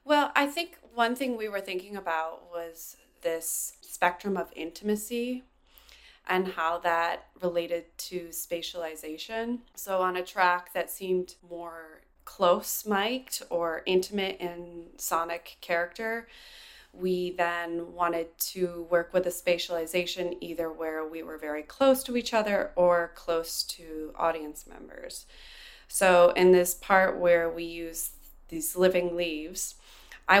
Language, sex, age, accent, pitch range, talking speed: English, female, 20-39, American, 165-185 Hz, 130 wpm